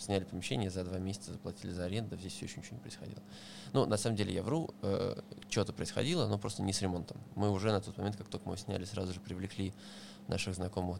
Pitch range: 95-105 Hz